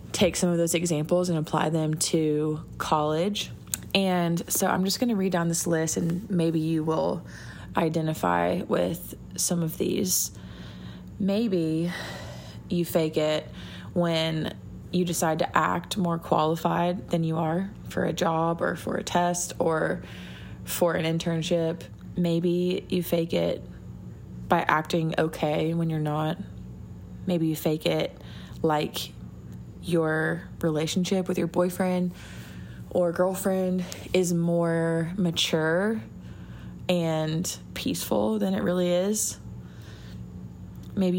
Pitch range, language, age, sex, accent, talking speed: 155-180 Hz, English, 20-39, female, American, 125 wpm